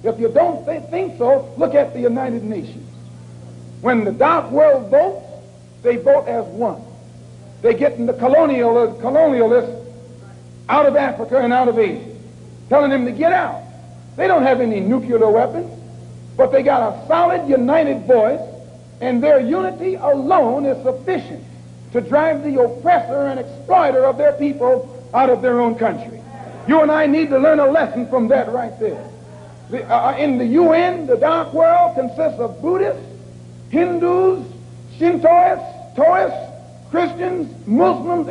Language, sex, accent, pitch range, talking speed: English, male, American, 225-315 Hz, 150 wpm